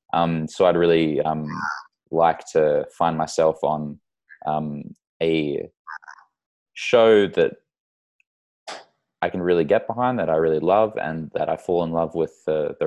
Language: English